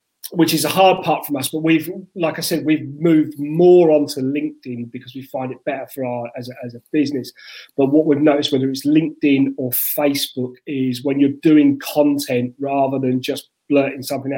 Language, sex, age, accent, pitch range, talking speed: English, male, 30-49, British, 130-150 Hz, 200 wpm